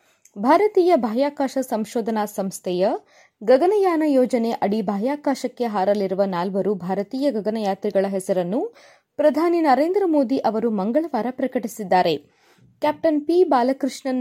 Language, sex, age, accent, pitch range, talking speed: Kannada, female, 20-39, native, 215-300 Hz, 95 wpm